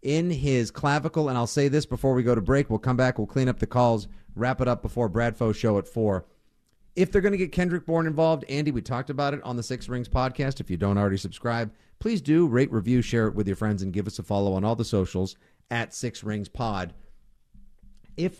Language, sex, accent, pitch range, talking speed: English, male, American, 105-145 Hz, 240 wpm